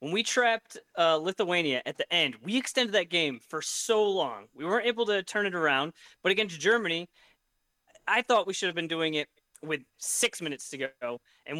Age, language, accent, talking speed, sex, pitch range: 30-49, English, American, 200 wpm, male, 160-225 Hz